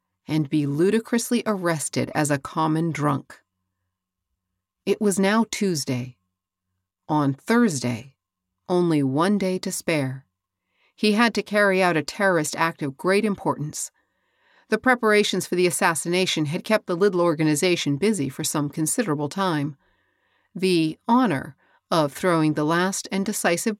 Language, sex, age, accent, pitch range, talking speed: English, female, 40-59, American, 145-205 Hz, 135 wpm